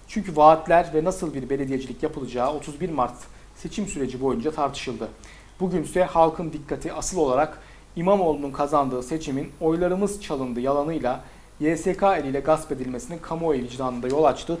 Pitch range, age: 135-165 Hz, 40-59